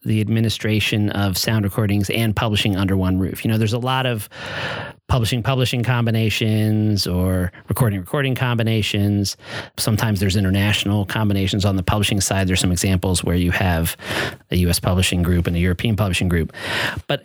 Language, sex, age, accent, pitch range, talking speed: English, male, 40-59, American, 95-115 Hz, 155 wpm